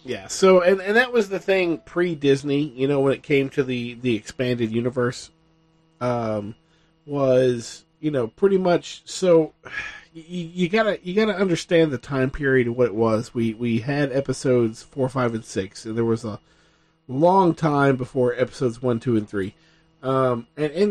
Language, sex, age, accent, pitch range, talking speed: English, male, 40-59, American, 115-160 Hz, 180 wpm